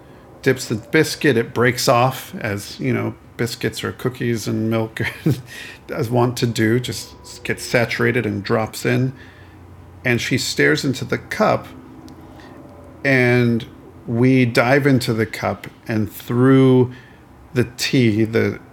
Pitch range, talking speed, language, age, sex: 110-125 Hz, 130 wpm, English, 50-69, male